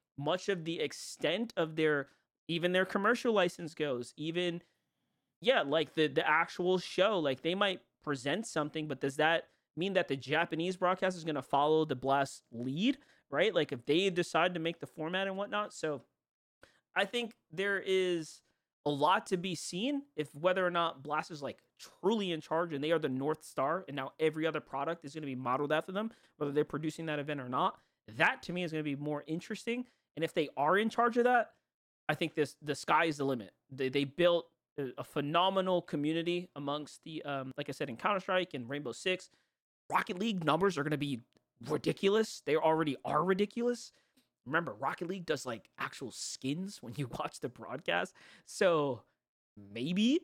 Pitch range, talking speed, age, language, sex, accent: 145-195 Hz, 195 wpm, 30-49, English, male, American